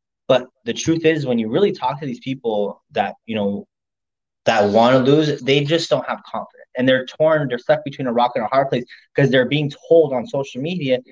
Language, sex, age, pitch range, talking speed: English, male, 20-39, 120-155 Hz, 225 wpm